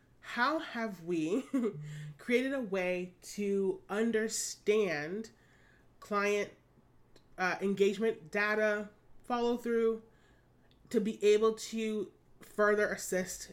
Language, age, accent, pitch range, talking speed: English, 30-49, American, 175-215 Hz, 90 wpm